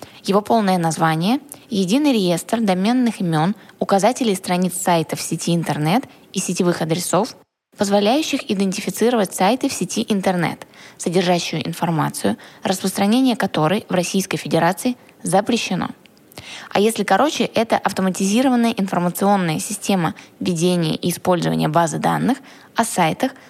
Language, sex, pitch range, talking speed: Russian, female, 180-230 Hz, 115 wpm